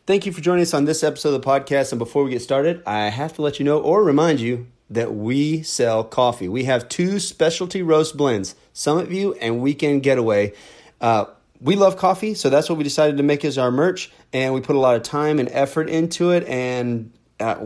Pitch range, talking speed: 125-160 Hz, 230 wpm